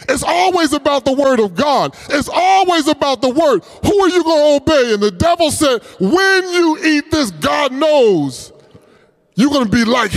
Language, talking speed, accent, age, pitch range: English, 185 wpm, American, 30-49, 250-330 Hz